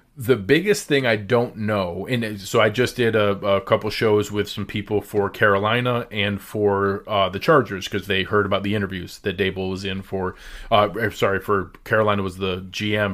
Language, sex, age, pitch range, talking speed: English, male, 30-49, 100-120 Hz, 195 wpm